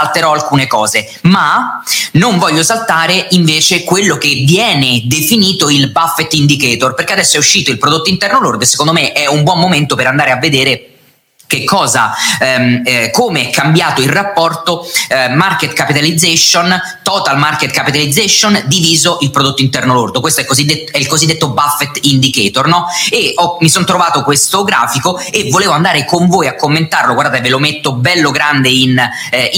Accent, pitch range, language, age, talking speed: native, 130-170 Hz, Italian, 30-49, 175 wpm